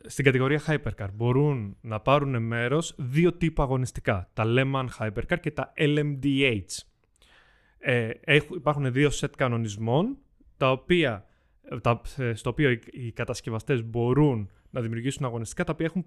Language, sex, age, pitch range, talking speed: Greek, male, 20-39, 120-155 Hz, 140 wpm